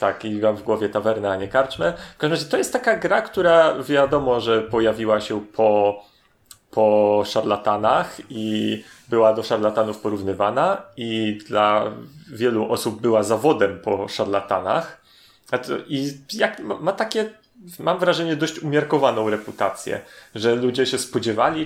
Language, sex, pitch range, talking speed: Polish, male, 110-155 Hz, 135 wpm